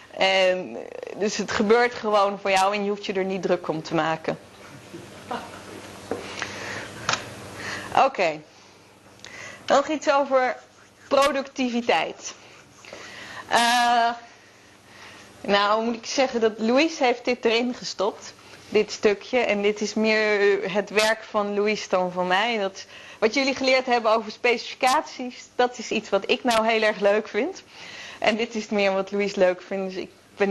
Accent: Dutch